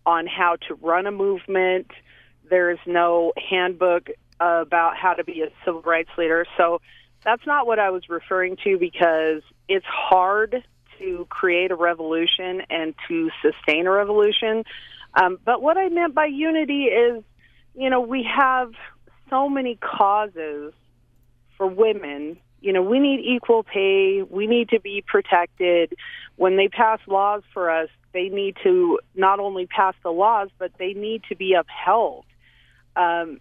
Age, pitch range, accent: 40-59, 170-225 Hz, American